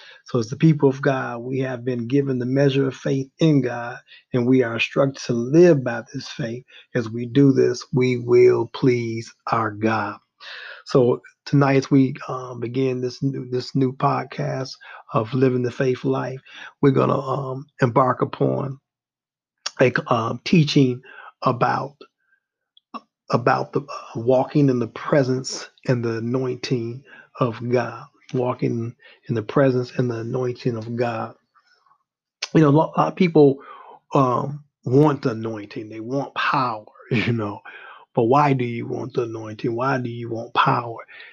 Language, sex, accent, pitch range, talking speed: English, male, American, 120-140 Hz, 155 wpm